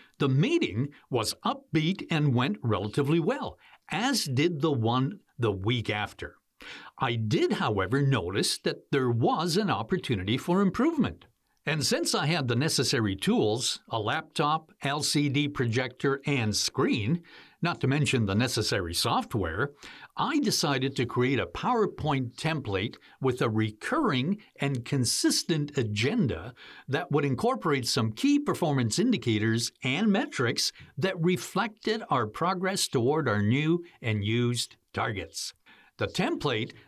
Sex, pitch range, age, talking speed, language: male, 110-160 Hz, 60-79, 130 wpm, English